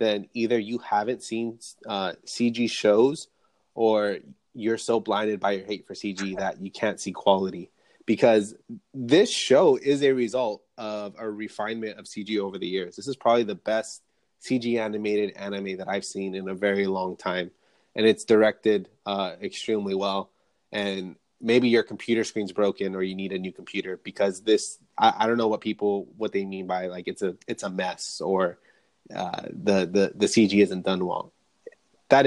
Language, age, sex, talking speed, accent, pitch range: English, 20-39, male, 180 wpm, American, 100-125 Hz